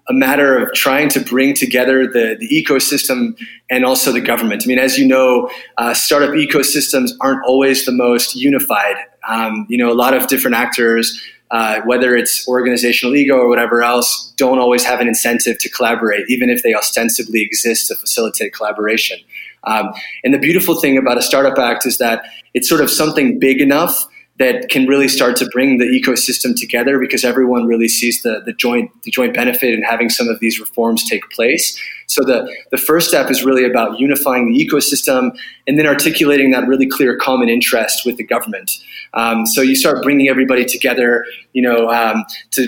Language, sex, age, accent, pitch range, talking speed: English, male, 20-39, American, 120-135 Hz, 185 wpm